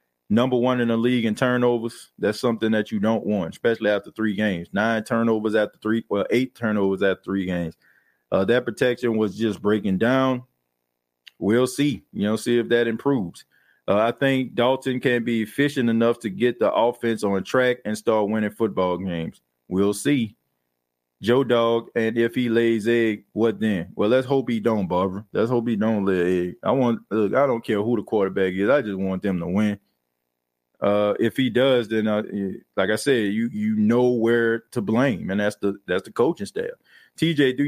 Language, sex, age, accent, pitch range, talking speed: English, male, 20-39, American, 100-120 Hz, 200 wpm